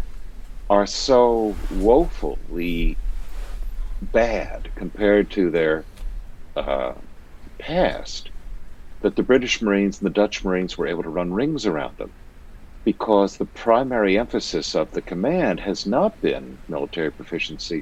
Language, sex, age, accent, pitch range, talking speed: English, male, 60-79, American, 75-105 Hz, 120 wpm